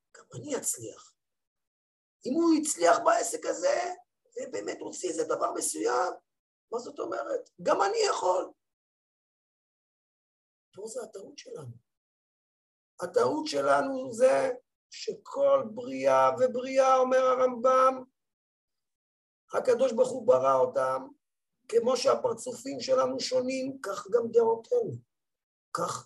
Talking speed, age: 105 wpm, 50-69